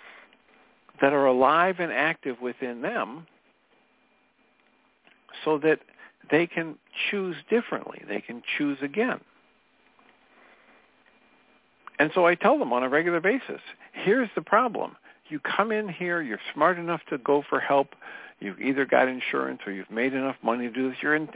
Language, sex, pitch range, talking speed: English, male, 130-170 Hz, 150 wpm